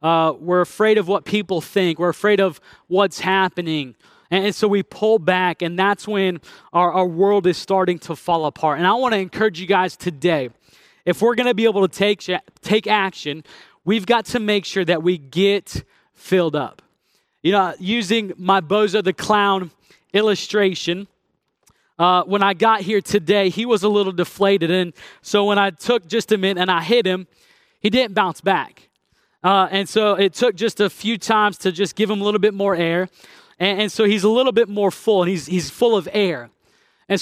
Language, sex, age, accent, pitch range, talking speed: English, male, 20-39, American, 185-215 Hz, 205 wpm